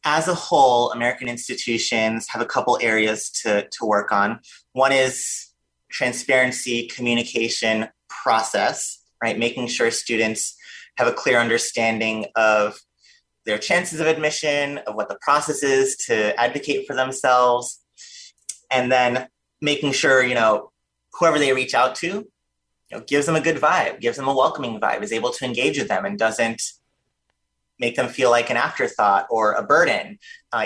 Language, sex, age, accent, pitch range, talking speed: English, male, 30-49, American, 105-130 Hz, 155 wpm